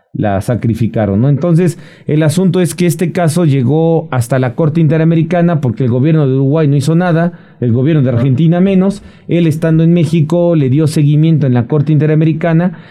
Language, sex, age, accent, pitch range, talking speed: Spanish, male, 40-59, Mexican, 145-180 Hz, 180 wpm